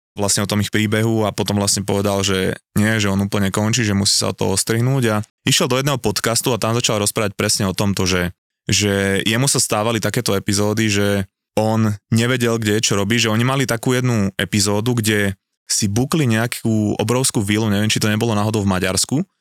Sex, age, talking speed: male, 20-39, 200 wpm